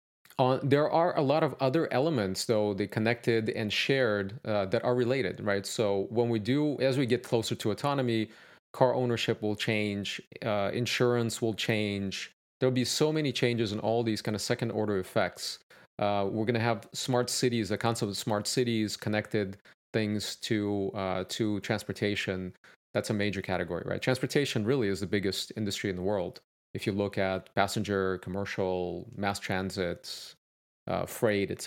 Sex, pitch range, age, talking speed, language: male, 100-120 Hz, 30-49, 175 wpm, English